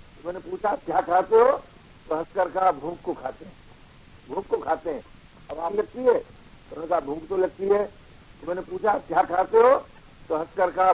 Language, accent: Hindi, native